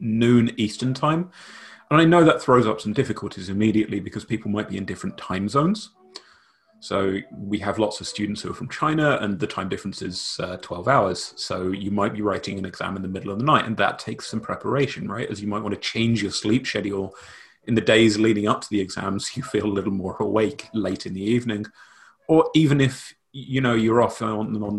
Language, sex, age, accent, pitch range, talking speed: English, male, 30-49, British, 100-125 Hz, 225 wpm